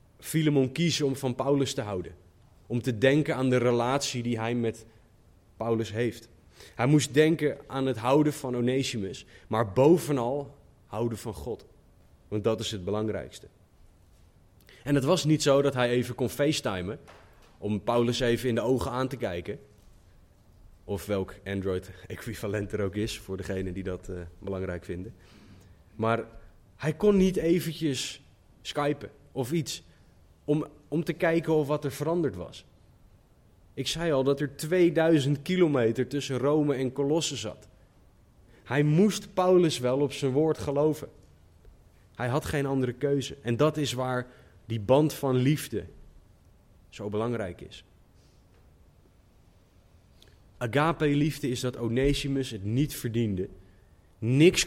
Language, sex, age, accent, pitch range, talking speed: Dutch, male, 20-39, Dutch, 100-145 Hz, 145 wpm